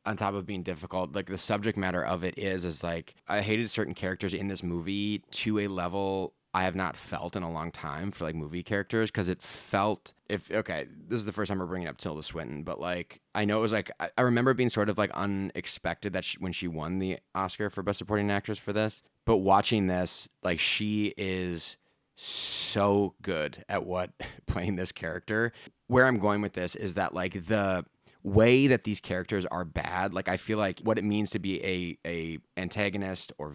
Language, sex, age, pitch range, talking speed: English, male, 20-39, 90-105 Hz, 210 wpm